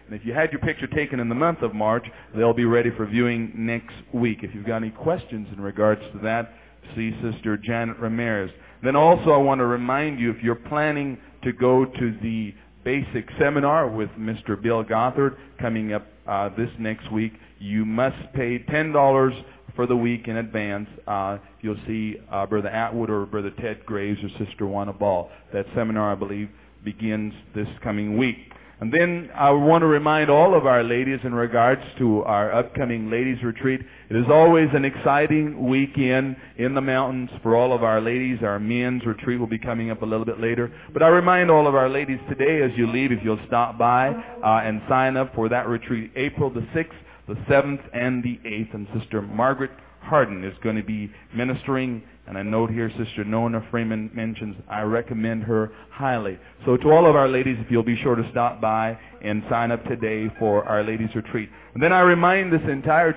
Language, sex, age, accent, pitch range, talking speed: English, male, 40-59, American, 110-130 Hz, 200 wpm